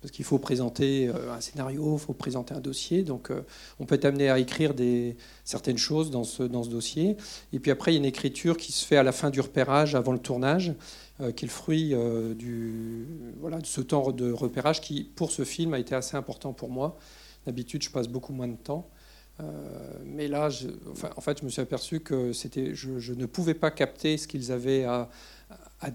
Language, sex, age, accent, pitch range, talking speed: French, male, 40-59, French, 125-145 Hz, 230 wpm